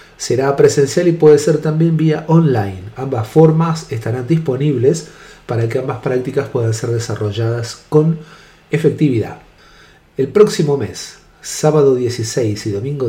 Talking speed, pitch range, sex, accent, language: 130 wpm, 120-155 Hz, male, Argentinian, Spanish